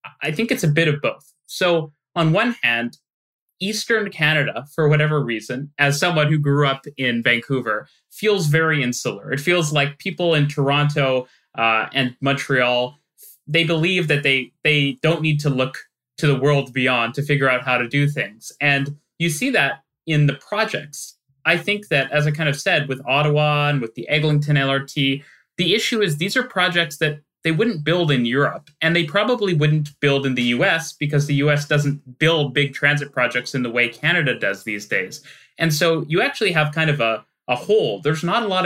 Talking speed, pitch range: 195 wpm, 135-165 Hz